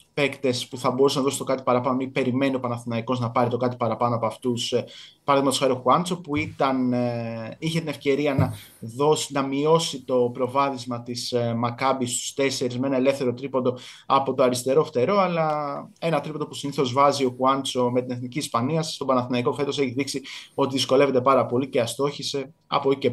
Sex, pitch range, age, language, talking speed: male, 125-145 Hz, 20-39, Greek, 185 wpm